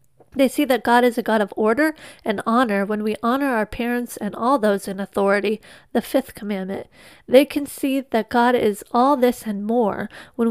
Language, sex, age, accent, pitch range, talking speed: English, female, 30-49, American, 205-255 Hz, 200 wpm